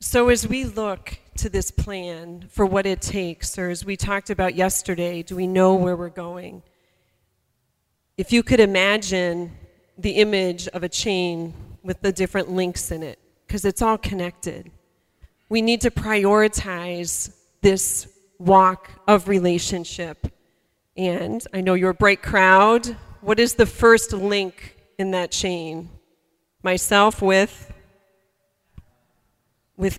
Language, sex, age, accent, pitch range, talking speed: English, female, 40-59, American, 180-205 Hz, 135 wpm